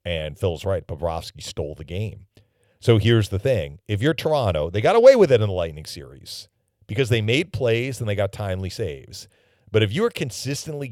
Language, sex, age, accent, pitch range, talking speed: English, male, 40-59, American, 95-115 Hz, 200 wpm